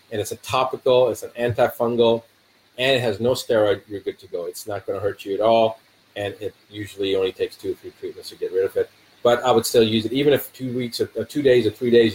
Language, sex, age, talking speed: English, male, 30-49, 265 wpm